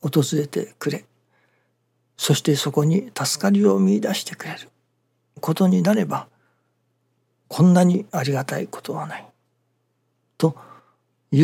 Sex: male